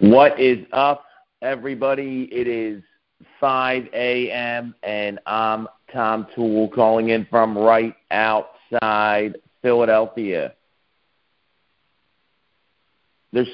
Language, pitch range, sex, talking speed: English, 115-150 Hz, male, 85 wpm